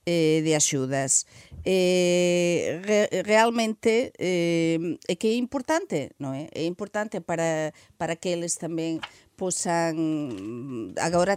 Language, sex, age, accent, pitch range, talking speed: Portuguese, female, 40-59, Spanish, 170-260 Hz, 90 wpm